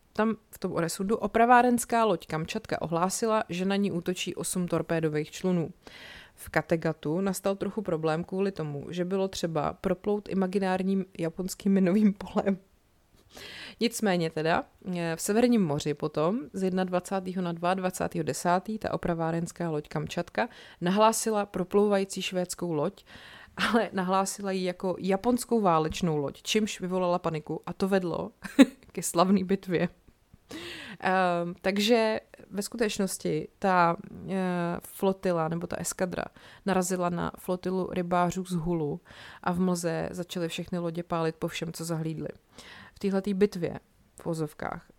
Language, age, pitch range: Czech, 30-49, 170-195 Hz